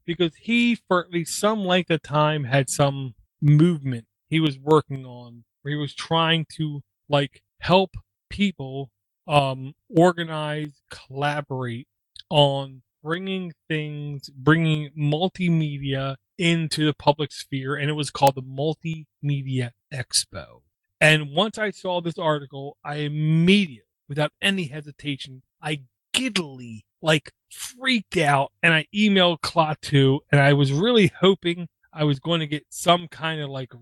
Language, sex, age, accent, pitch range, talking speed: English, male, 30-49, American, 135-170 Hz, 135 wpm